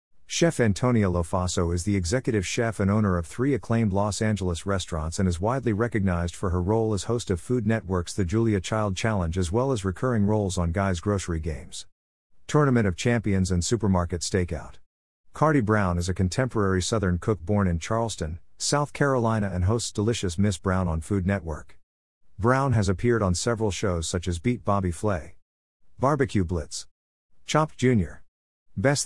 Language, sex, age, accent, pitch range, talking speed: English, male, 50-69, American, 90-115 Hz, 170 wpm